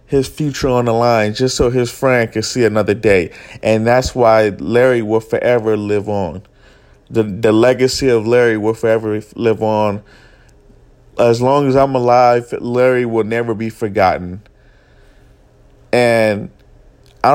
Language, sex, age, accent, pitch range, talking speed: English, male, 30-49, American, 105-120 Hz, 145 wpm